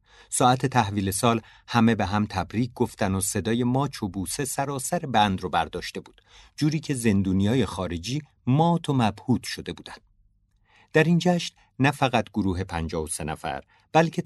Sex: male